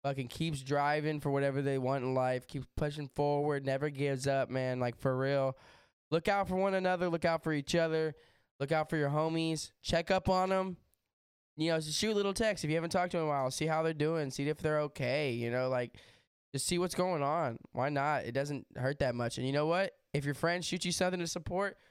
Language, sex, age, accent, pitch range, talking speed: English, male, 10-29, American, 130-165 Hz, 245 wpm